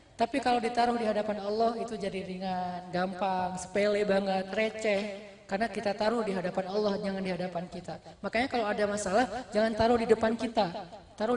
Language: Indonesian